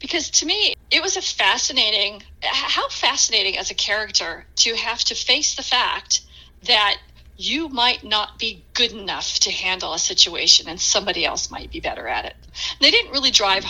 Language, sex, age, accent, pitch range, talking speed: English, female, 40-59, American, 200-260 Hz, 180 wpm